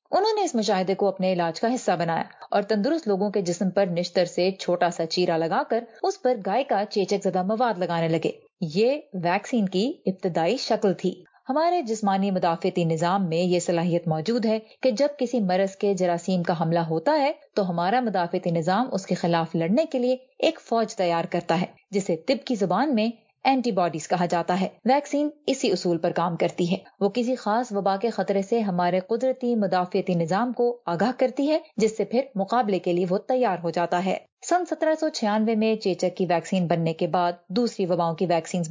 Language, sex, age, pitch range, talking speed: Urdu, female, 30-49, 180-235 Hz, 200 wpm